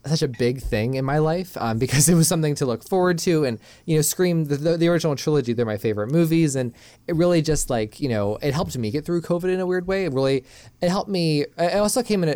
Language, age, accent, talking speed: English, 20-39, American, 265 wpm